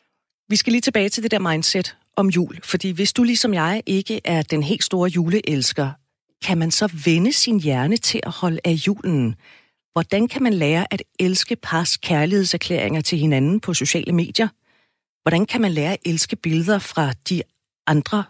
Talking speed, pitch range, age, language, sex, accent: 180 wpm, 160-215 Hz, 40-59, Danish, female, native